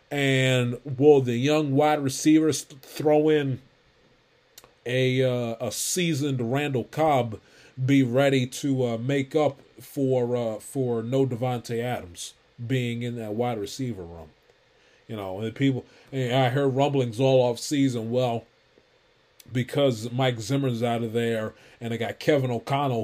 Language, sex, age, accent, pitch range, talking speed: English, male, 30-49, American, 115-135 Hz, 145 wpm